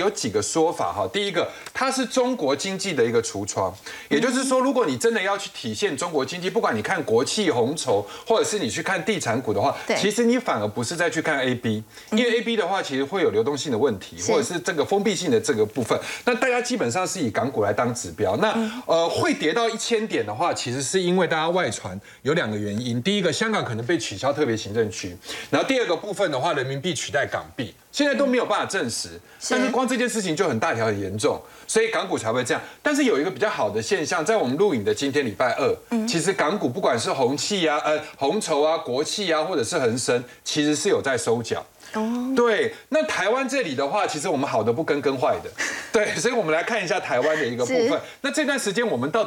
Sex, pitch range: male, 150-235 Hz